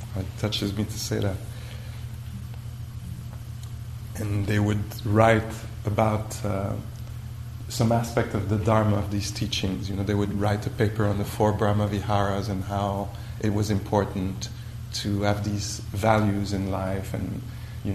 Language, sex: English, male